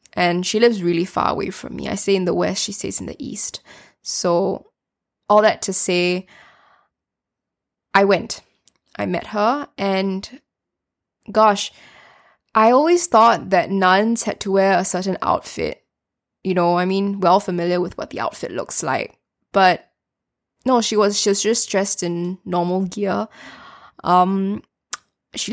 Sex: female